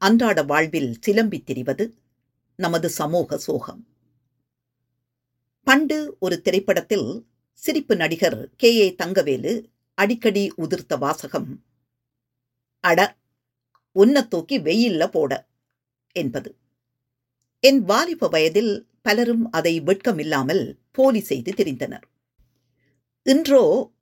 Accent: native